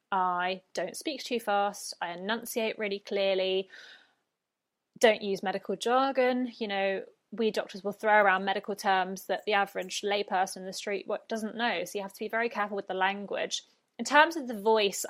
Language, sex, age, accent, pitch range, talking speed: English, female, 20-39, British, 190-245 Hz, 185 wpm